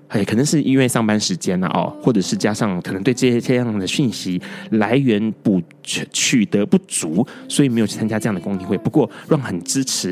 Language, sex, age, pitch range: Chinese, male, 20-39, 110-165 Hz